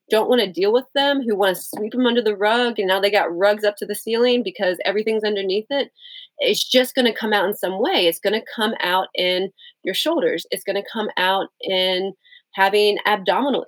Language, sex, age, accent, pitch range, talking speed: English, female, 30-49, American, 180-225 Hz, 230 wpm